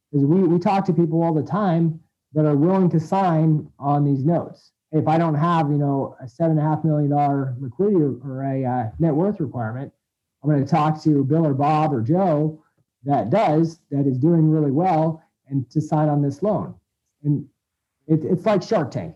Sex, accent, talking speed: male, American, 205 wpm